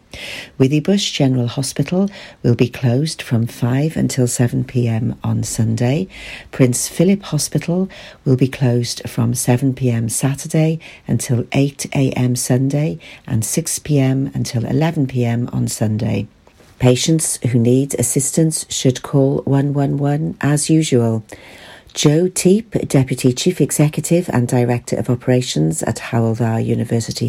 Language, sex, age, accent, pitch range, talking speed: English, female, 50-69, British, 120-150 Hz, 115 wpm